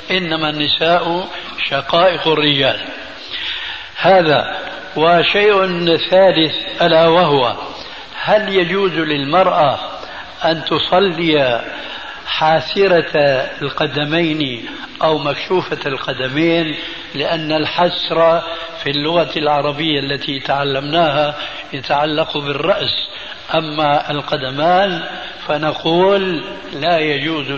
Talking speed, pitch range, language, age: 70 wpm, 150-185 Hz, Arabic, 60-79